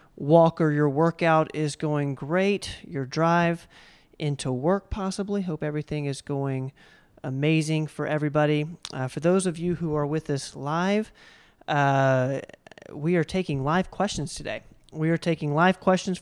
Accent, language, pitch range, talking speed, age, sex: American, English, 150-190 Hz, 150 wpm, 40-59, male